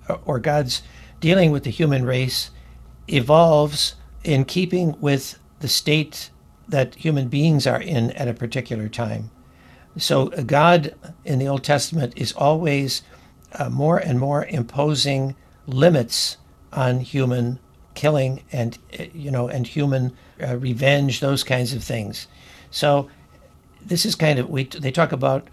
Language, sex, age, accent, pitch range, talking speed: English, male, 60-79, American, 120-145 Hz, 135 wpm